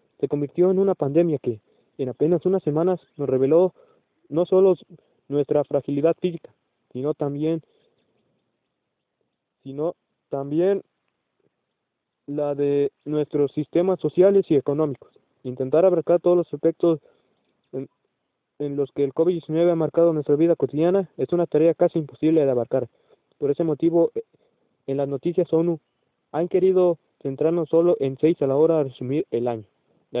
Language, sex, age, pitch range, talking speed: Spanish, male, 20-39, 135-170 Hz, 140 wpm